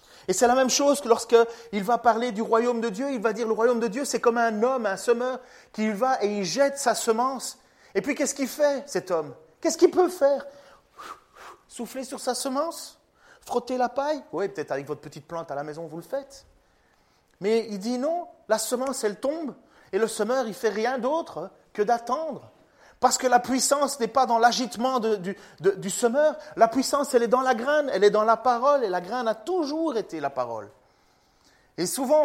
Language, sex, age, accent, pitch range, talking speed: French, male, 30-49, French, 200-265 Hz, 215 wpm